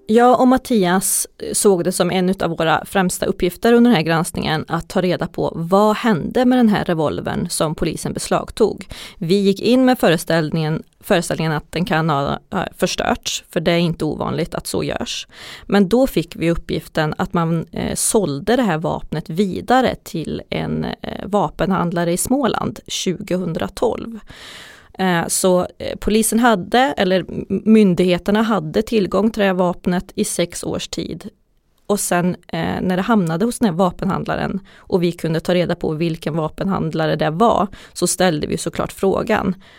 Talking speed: 160 wpm